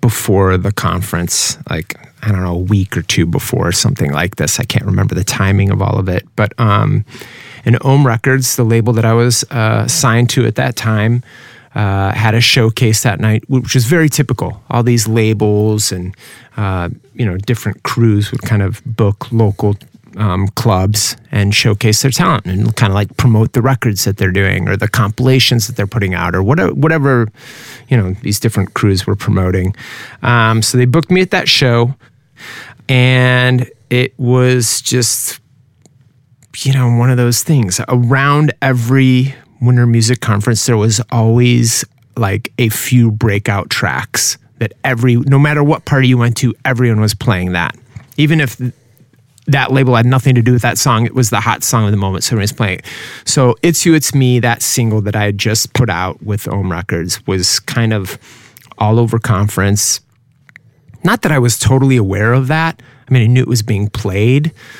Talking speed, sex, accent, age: 185 wpm, male, American, 30-49